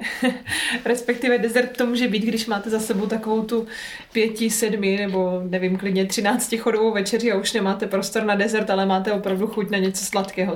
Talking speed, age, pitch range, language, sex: 180 wpm, 20-39, 185-210 Hz, Czech, female